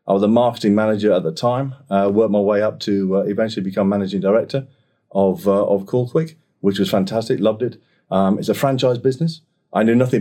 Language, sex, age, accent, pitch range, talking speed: English, male, 40-59, British, 105-130 Hz, 210 wpm